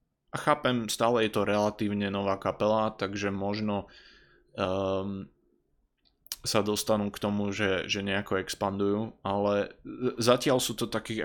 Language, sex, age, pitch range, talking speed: Slovak, male, 20-39, 100-115 Hz, 130 wpm